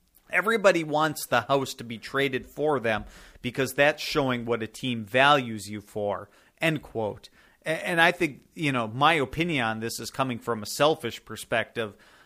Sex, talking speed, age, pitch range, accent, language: male, 170 wpm, 40-59, 110-135 Hz, American, English